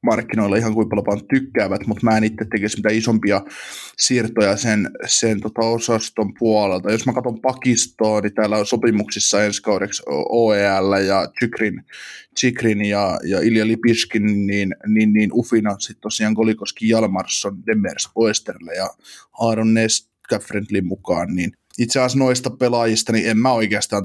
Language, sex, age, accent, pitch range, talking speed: Finnish, male, 20-39, native, 105-115 Hz, 135 wpm